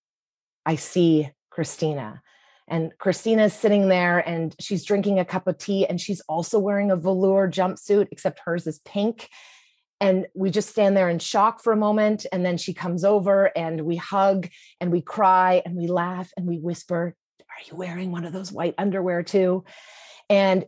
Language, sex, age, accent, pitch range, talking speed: English, female, 30-49, American, 165-195 Hz, 185 wpm